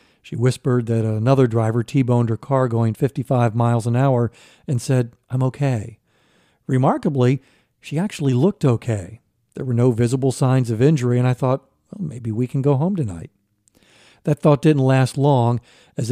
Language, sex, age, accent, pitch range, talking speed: English, male, 50-69, American, 115-140 Hz, 170 wpm